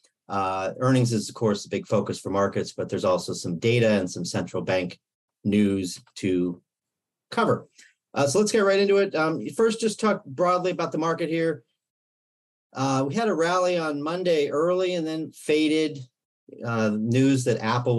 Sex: male